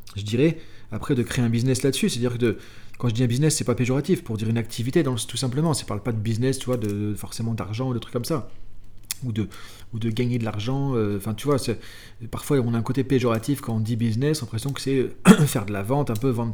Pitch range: 110-140 Hz